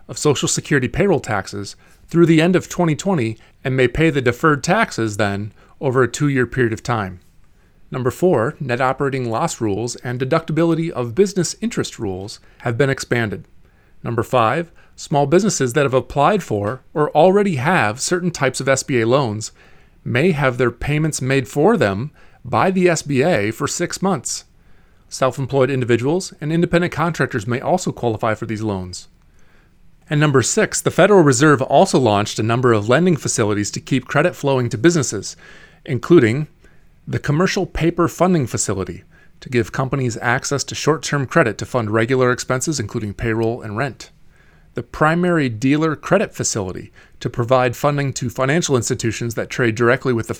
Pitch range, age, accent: 115-165 Hz, 30-49, American